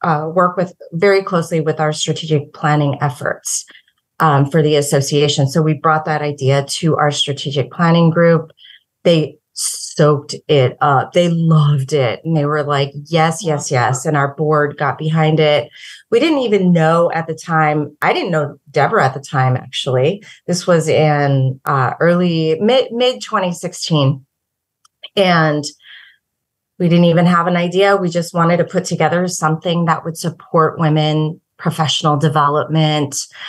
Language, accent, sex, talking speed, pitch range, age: English, American, female, 155 wpm, 150-175 Hz, 30-49